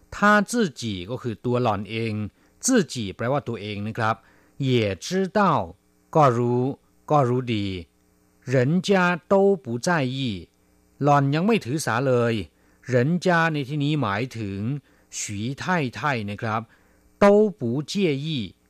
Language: Thai